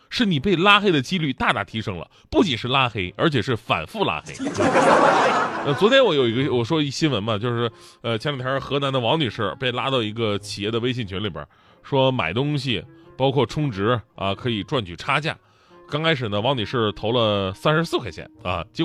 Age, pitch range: 20-39, 110-155 Hz